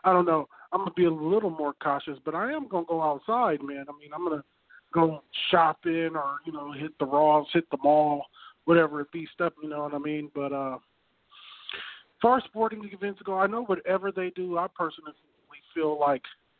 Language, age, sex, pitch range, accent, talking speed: English, 40-59, male, 150-185 Hz, American, 205 wpm